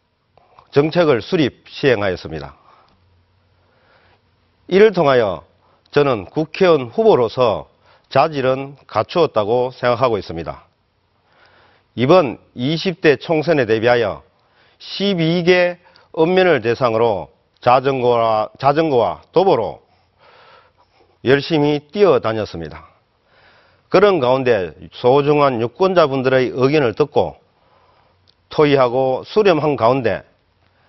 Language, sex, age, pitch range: Korean, male, 40-59, 110-165 Hz